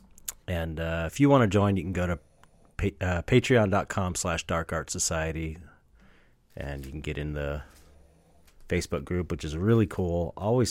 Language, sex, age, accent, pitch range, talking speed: English, male, 40-59, American, 75-95 Hz, 165 wpm